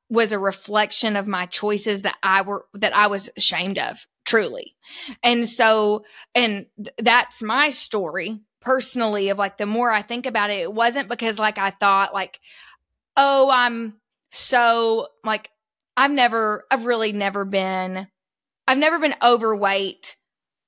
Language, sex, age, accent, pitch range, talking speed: English, female, 20-39, American, 205-245 Hz, 150 wpm